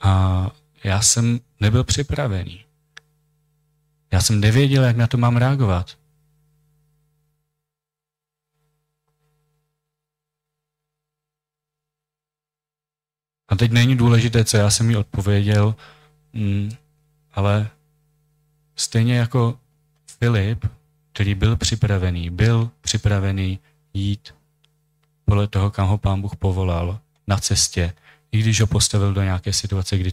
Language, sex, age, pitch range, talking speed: Czech, male, 30-49, 100-150 Hz, 100 wpm